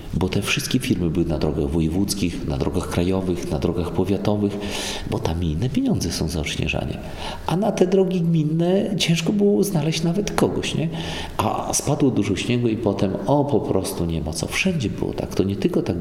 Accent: native